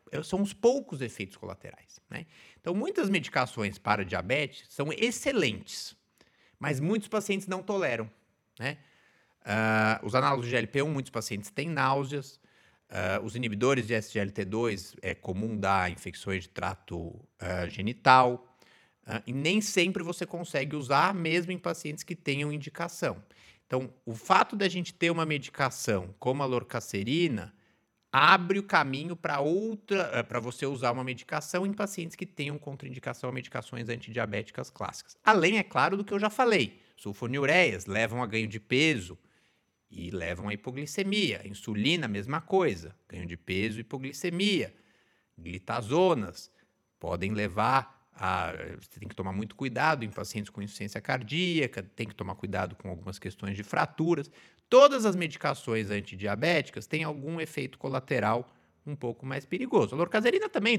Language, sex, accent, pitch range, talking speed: Portuguese, male, Brazilian, 105-165 Hz, 145 wpm